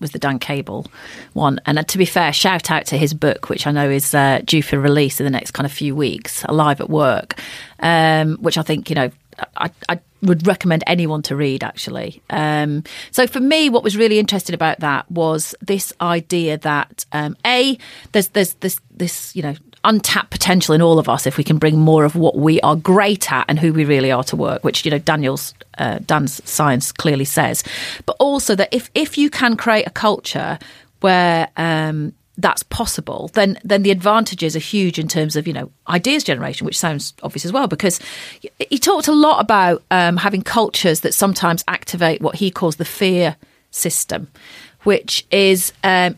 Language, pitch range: English, 150-195 Hz